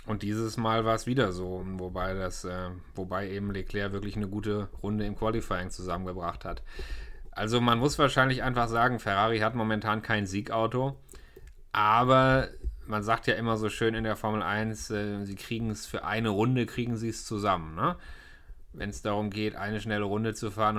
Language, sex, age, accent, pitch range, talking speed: German, male, 30-49, German, 100-115 Hz, 180 wpm